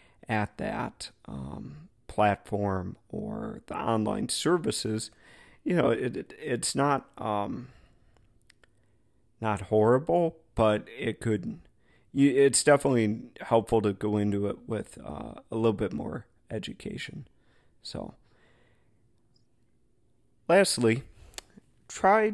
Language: English